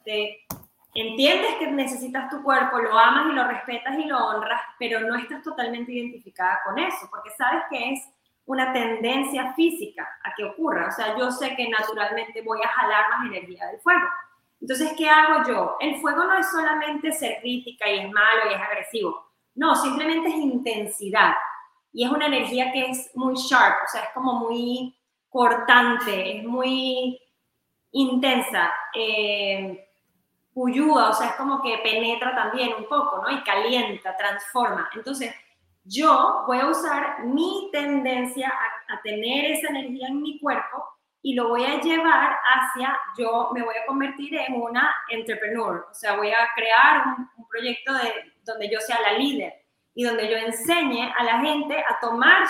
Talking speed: 170 wpm